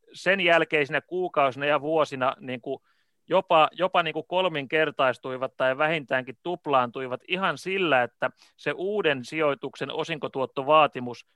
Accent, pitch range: native, 135-170 Hz